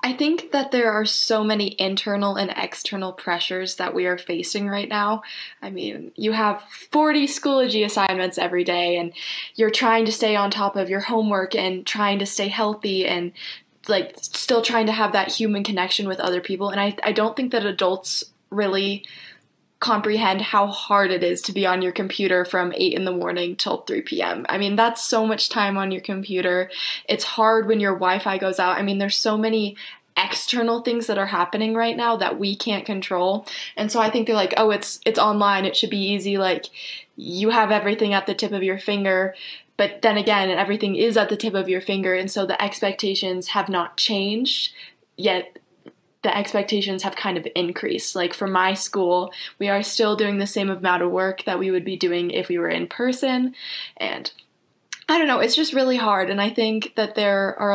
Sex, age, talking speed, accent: female, 20-39, 205 wpm, American